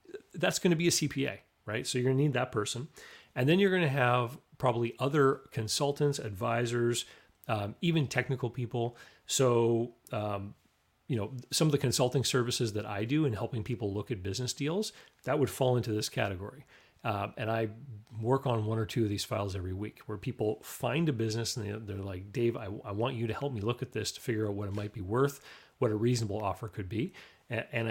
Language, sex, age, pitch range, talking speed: English, male, 40-59, 105-125 Hz, 210 wpm